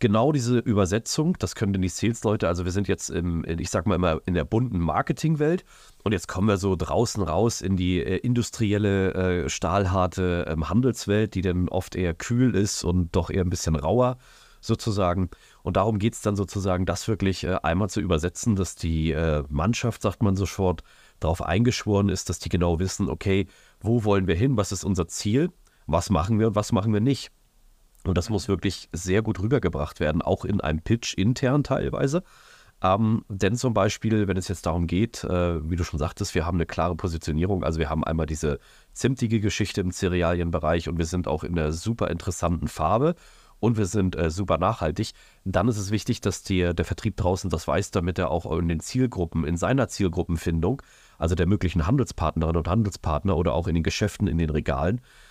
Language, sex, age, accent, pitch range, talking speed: German, male, 30-49, German, 85-110 Hz, 195 wpm